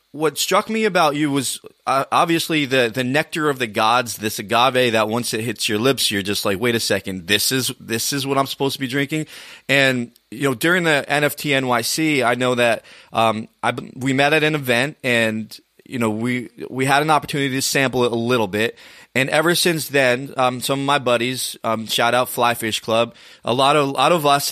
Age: 30-49